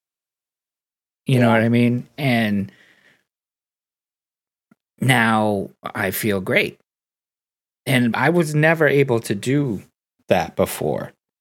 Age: 30-49